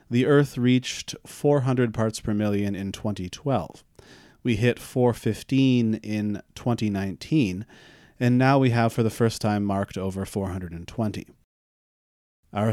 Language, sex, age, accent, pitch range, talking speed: English, male, 30-49, American, 105-125 Hz, 125 wpm